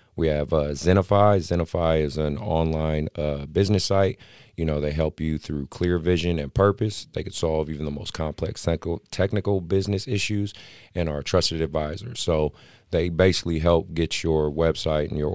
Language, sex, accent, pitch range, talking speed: English, male, American, 80-95 Hz, 170 wpm